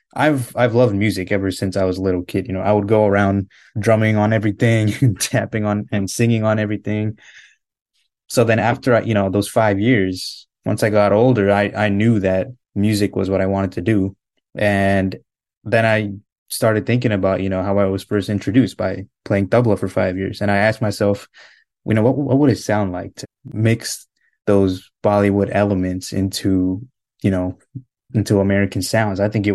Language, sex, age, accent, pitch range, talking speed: English, male, 20-39, American, 100-115 Hz, 195 wpm